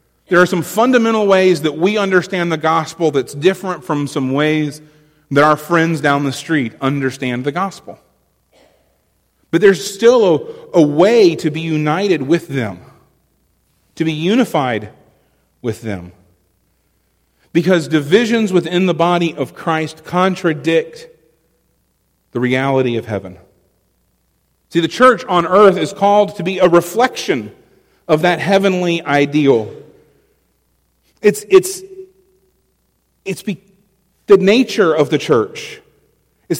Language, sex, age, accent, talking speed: English, male, 40-59, American, 125 wpm